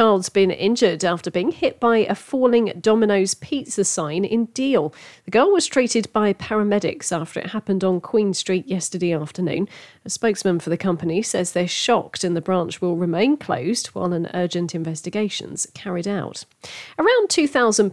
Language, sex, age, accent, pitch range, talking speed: English, female, 40-59, British, 175-215 Hz, 175 wpm